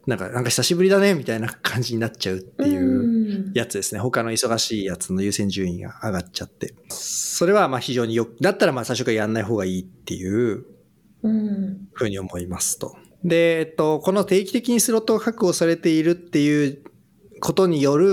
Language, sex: Japanese, male